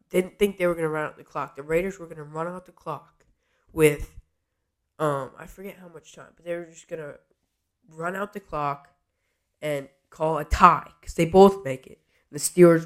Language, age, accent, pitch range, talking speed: English, 10-29, American, 150-180 Hz, 220 wpm